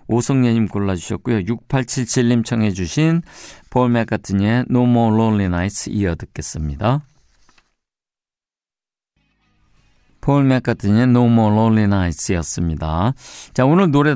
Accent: native